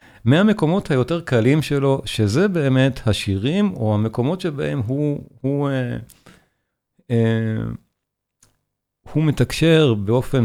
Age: 50-69